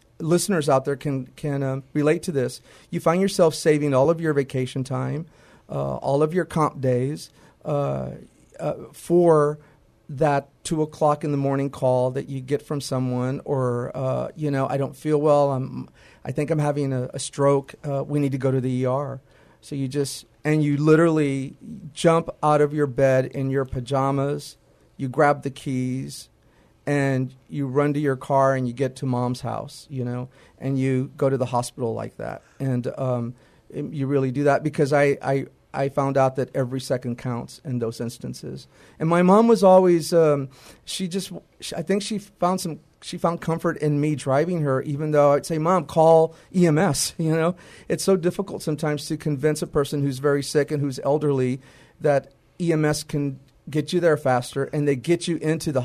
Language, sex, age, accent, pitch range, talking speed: English, male, 40-59, American, 130-155 Hz, 190 wpm